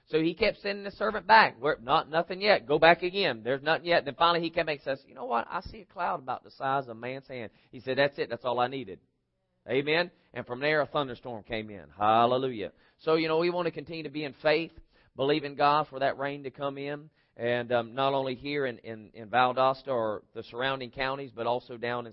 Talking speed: 250 wpm